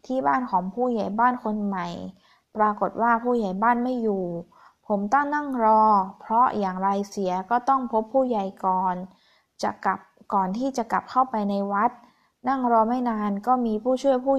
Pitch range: 200-250 Hz